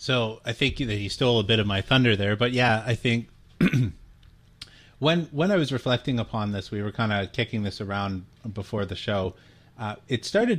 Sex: male